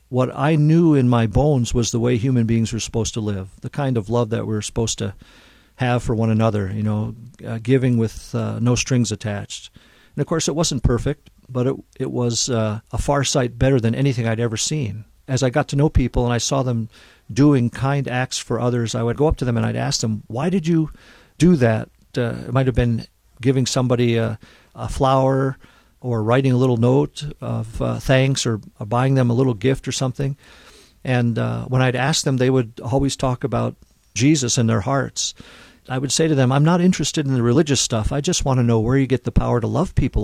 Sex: male